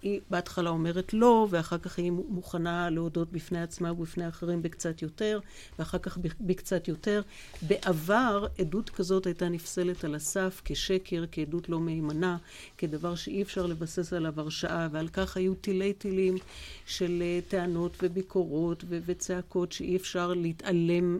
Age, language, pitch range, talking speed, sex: 50-69, Hebrew, 160-185 Hz, 135 wpm, female